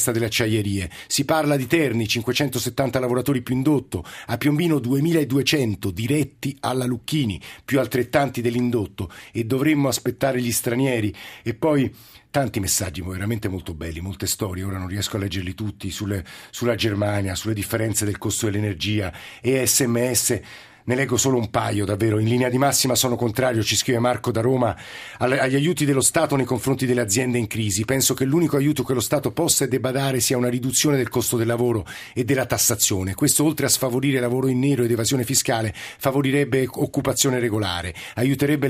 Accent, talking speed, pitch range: native, 170 wpm, 115-135 Hz